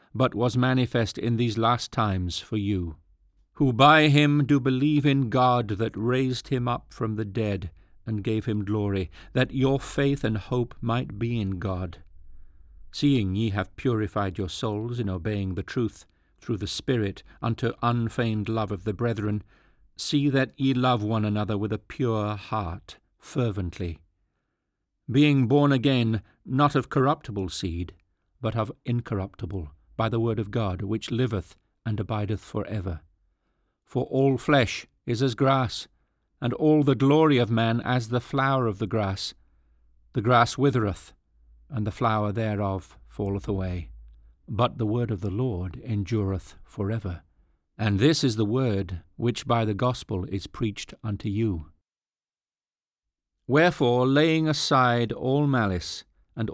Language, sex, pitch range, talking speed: English, male, 95-125 Hz, 150 wpm